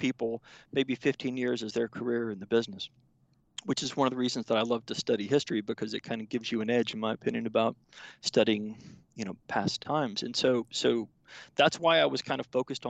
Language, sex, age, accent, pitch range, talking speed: English, male, 40-59, American, 110-135 Hz, 230 wpm